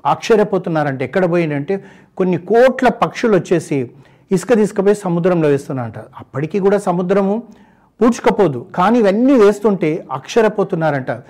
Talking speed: 95 wpm